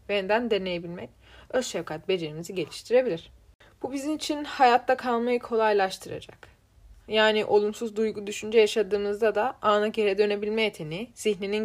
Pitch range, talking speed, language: 180-235 Hz, 120 wpm, Turkish